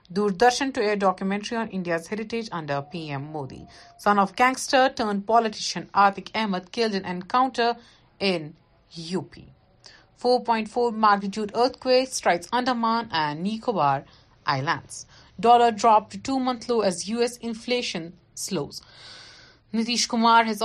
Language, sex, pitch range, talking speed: Urdu, female, 165-230 Hz, 120 wpm